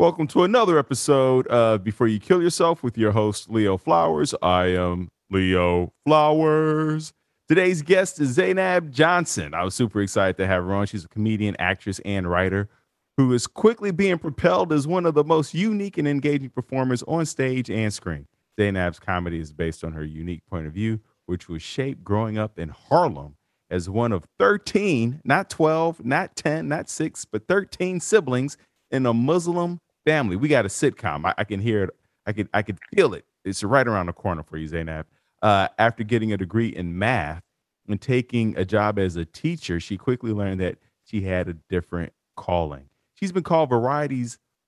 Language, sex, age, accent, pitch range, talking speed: English, male, 40-59, American, 90-140 Hz, 185 wpm